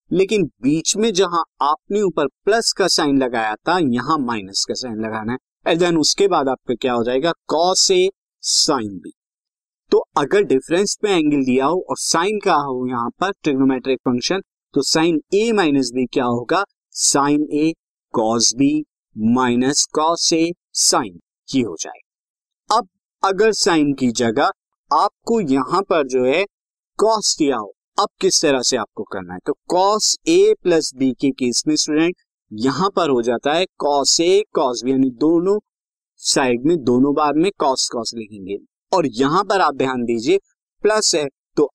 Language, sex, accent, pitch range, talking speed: Hindi, male, native, 130-195 Hz, 170 wpm